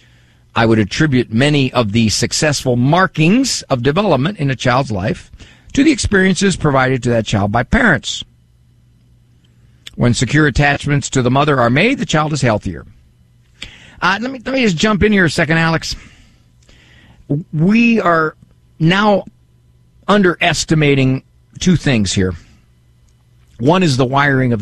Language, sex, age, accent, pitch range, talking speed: English, male, 50-69, American, 115-160 Hz, 140 wpm